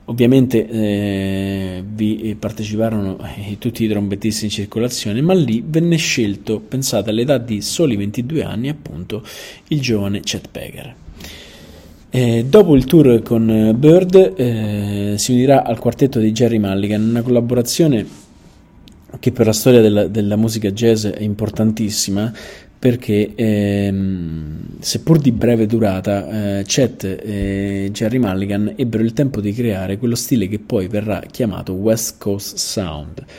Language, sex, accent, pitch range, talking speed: Italian, male, native, 100-120 Hz, 135 wpm